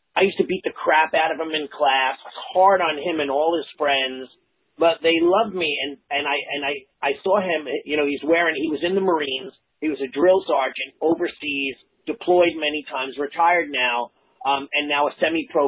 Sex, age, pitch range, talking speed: male, 40-59, 140-175 Hz, 215 wpm